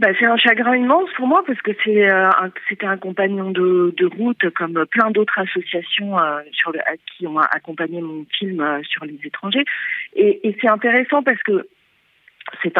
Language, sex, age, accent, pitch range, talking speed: French, female, 40-59, French, 180-245 Hz, 175 wpm